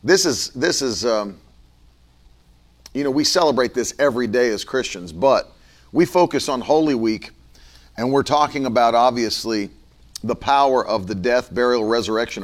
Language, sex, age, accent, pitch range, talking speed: English, male, 40-59, American, 100-145 Hz, 155 wpm